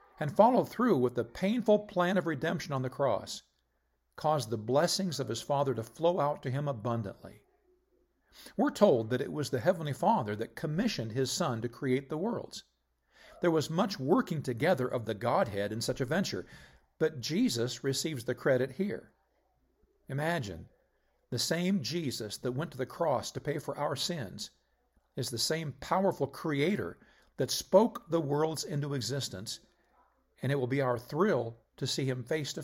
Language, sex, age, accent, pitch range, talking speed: English, male, 50-69, American, 115-170 Hz, 175 wpm